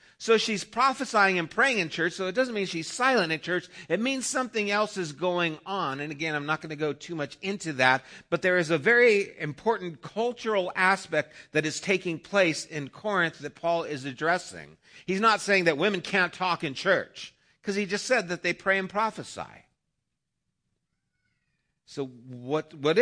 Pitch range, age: 140-195 Hz, 50-69